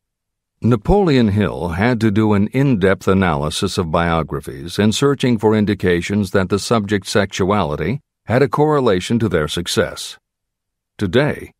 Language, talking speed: English, 130 wpm